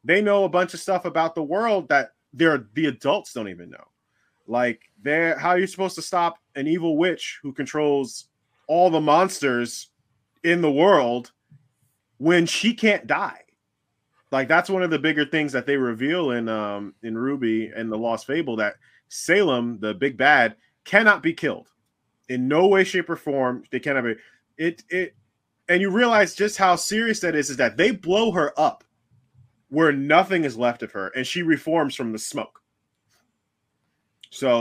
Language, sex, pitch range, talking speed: English, male, 120-165 Hz, 175 wpm